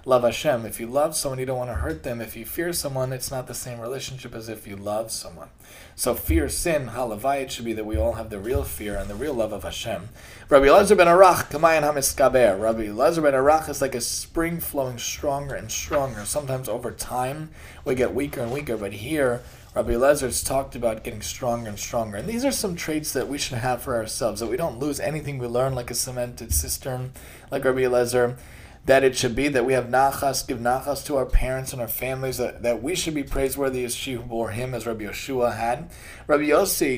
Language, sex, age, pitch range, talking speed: English, male, 30-49, 120-145 Hz, 230 wpm